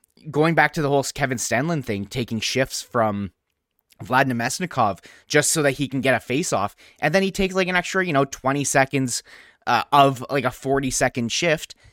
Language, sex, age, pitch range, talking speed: English, male, 20-39, 130-170 Hz, 200 wpm